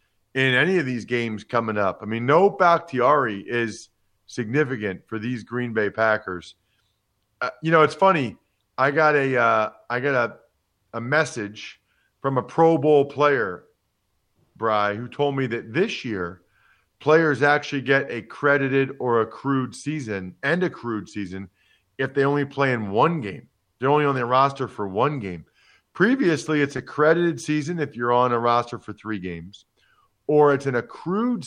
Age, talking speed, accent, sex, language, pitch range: 40-59, 170 wpm, American, male, English, 105-140 Hz